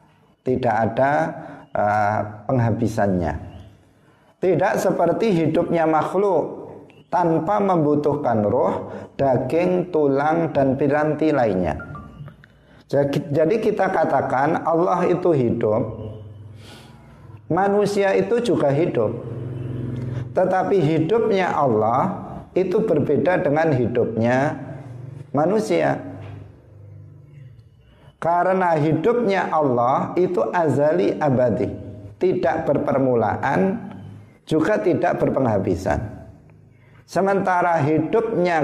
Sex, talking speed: male, 75 wpm